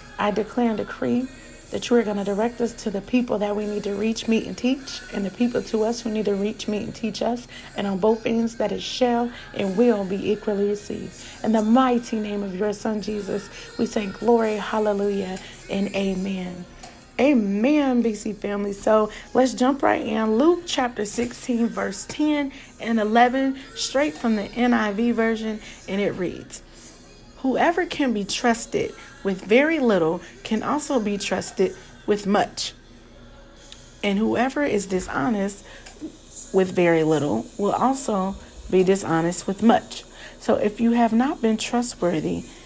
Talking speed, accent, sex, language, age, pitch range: 165 wpm, American, female, English, 40-59, 200-245 Hz